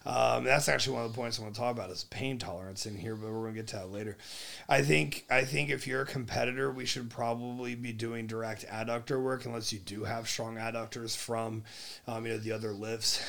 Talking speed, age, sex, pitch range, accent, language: 245 wpm, 30-49, male, 105-120 Hz, American, English